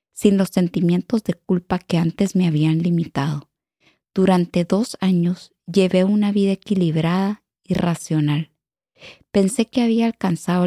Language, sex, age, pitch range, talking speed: English, female, 30-49, 170-210 Hz, 130 wpm